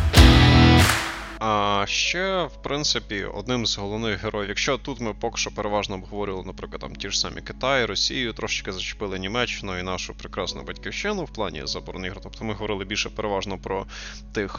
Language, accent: Russian, native